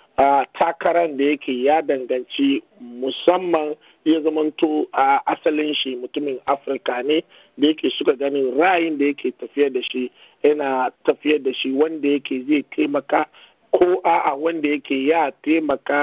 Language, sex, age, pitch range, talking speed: English, male, 50-69, 135-165 Hz, 115 wpm